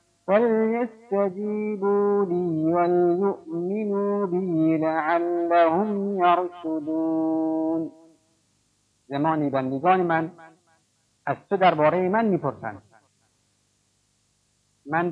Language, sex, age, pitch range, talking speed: Persian, male, 50-69, 140-180 Hz, 60 wpm